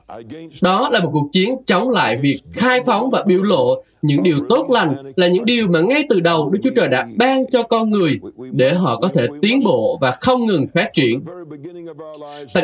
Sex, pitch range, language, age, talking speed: male, 165-245 Hz, Vietnamese, 20-39, 210 wpm